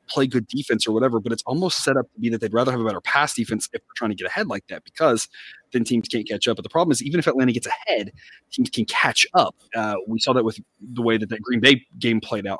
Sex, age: male, 30-49